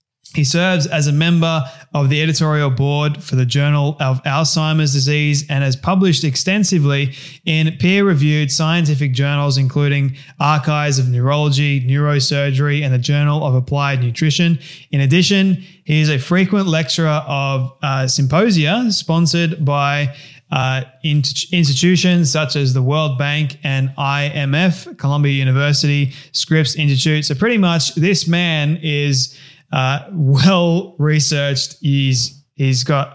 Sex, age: male, 20-39